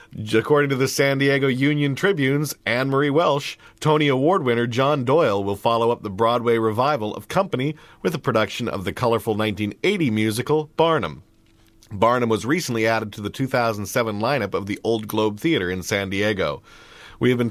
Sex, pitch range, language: male, 105-135 Hz, English